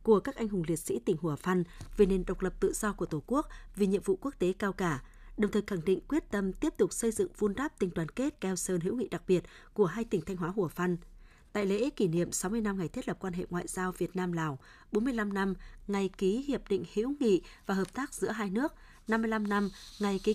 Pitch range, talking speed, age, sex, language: 185-220 Hz, 255 wpm, 20-39, female, Vietnamese